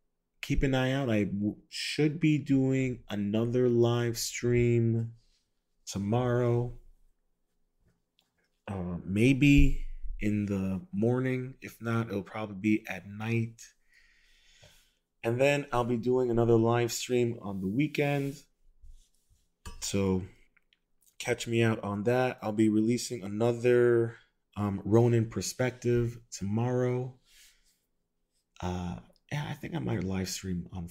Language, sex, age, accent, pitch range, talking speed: English, male, 30-49, American, 95-120 Hz, 115 wpm